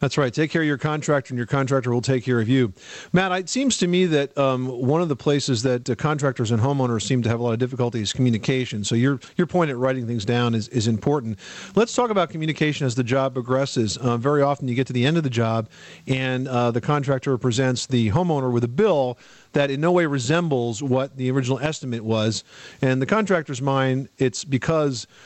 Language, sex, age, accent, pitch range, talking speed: English, male, 40-59, American, 125-155 Hz, 230 wpm